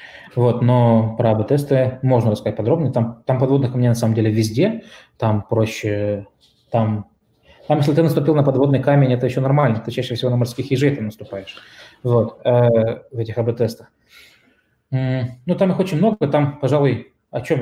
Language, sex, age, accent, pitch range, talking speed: Russian, male, 20-39, native, 110-135 Hz, 175 wpm